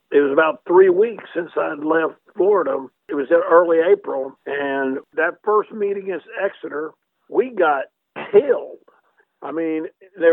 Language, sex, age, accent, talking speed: English, male, 50-69, American, 150 wpm